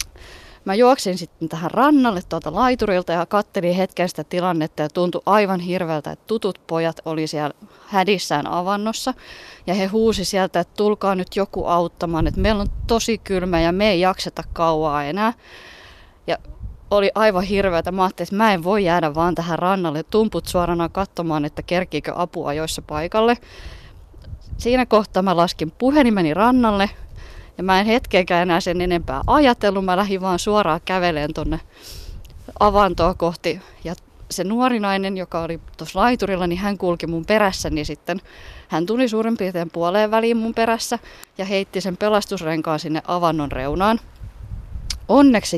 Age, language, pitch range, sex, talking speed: 20-39, Finnish, 165-210 Hz, female, 155 wpm